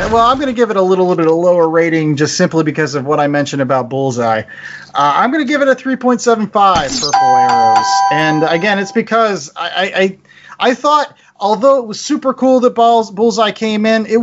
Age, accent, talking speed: 30-49, American, 210 wpm